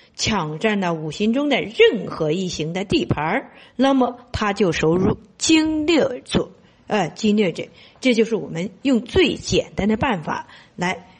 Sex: female